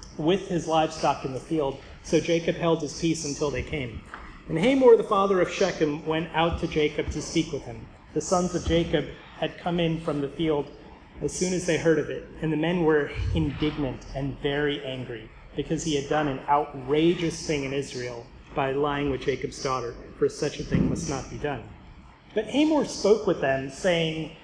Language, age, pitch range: English, 30-49, 145-180 Hz